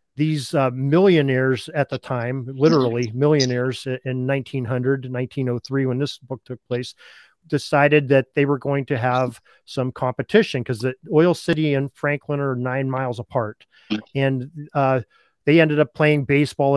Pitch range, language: 130-150 Hz, English